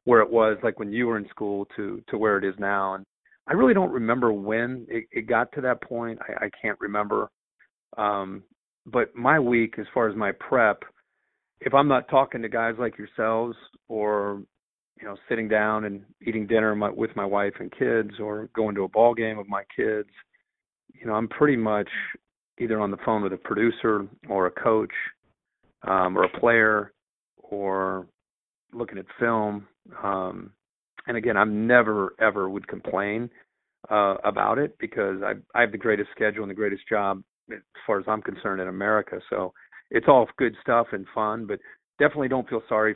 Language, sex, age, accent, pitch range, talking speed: English, male, 40-59, American, 100-110 Hz, 185 wpm